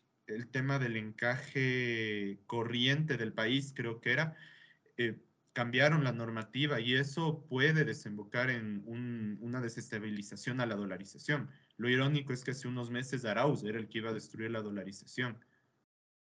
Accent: Mexican